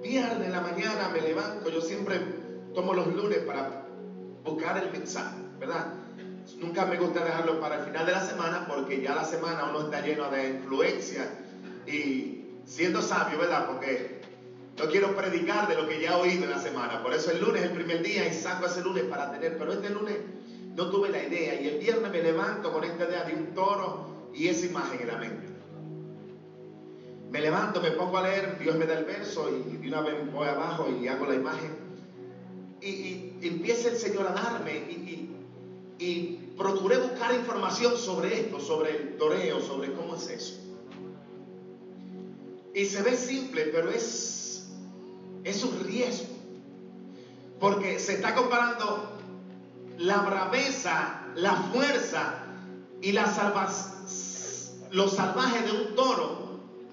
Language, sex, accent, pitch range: Spanish, male, Venezuelan, 145-200 Hz